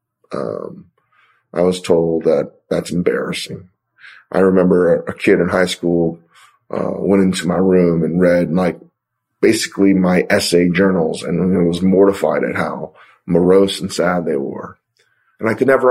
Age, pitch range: 30-49, 90-105 Hz